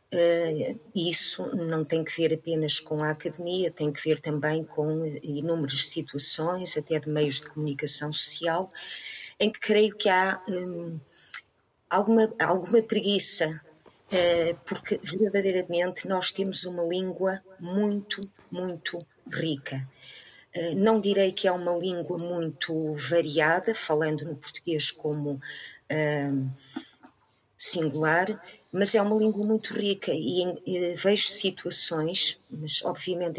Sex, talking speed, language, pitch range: female, 115 wpm, Portuguese, 155-190 Hz